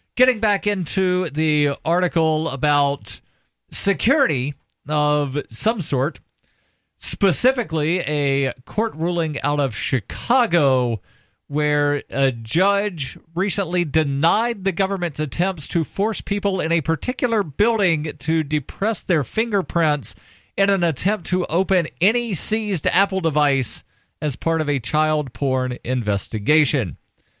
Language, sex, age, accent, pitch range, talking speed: English, male, 40-59, American, 130-185 Hz, 115 wpm